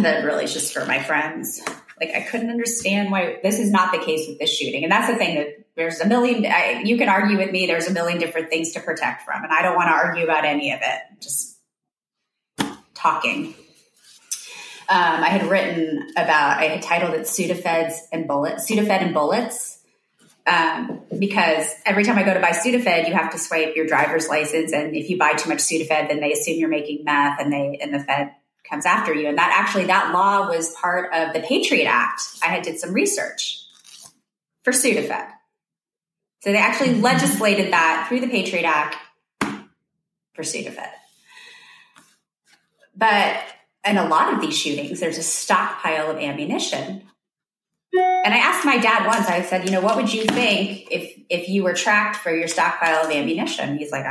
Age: 30-49